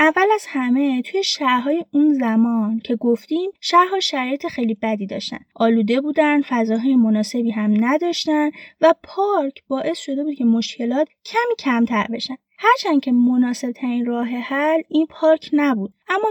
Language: Persian